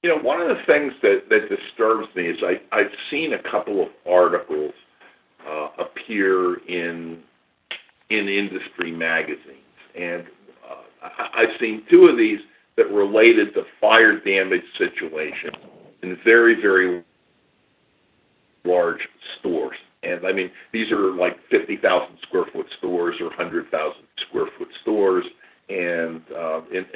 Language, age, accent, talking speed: English, 50-69, American, 135 wpm